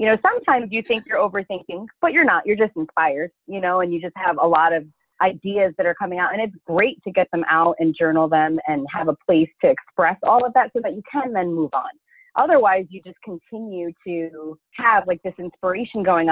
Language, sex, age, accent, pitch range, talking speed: English, female, 30-49, American, 165-215 Hz, 230 wpm